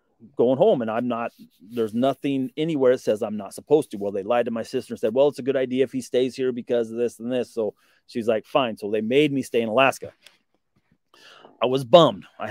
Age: 30-49